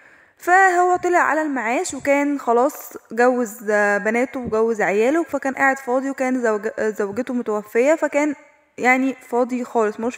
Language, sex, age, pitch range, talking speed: Arabic, female, 10-29, 235-290 Hz, 125 wpm